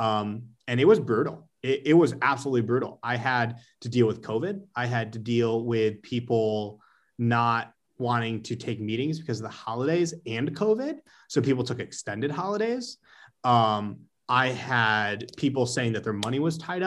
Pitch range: 115-140 Hz